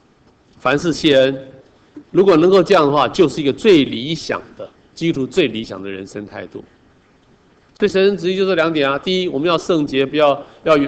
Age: 50-69